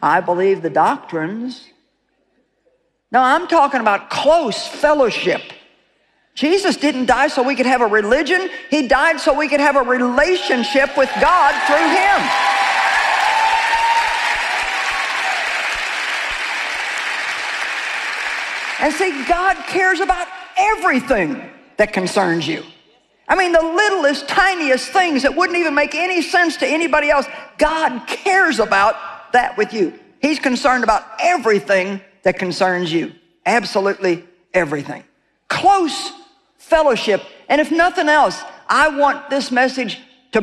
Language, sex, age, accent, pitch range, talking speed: English, female, 50-69, American, 240-315 Hz, 120 wpm